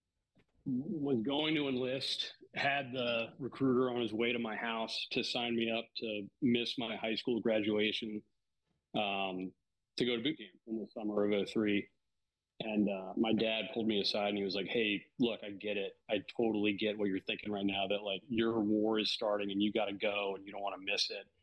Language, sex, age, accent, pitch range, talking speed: English, male, 40-59, American, 100-115 Hz, 215 wpm